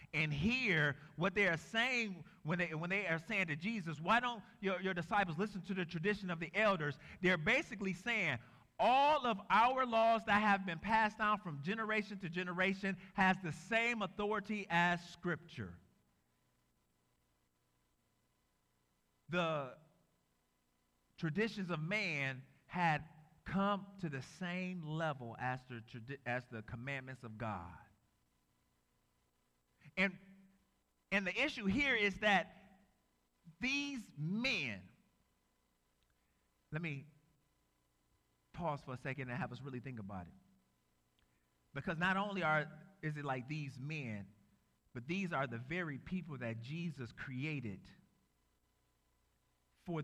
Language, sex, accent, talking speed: English, male, American, 125 wpm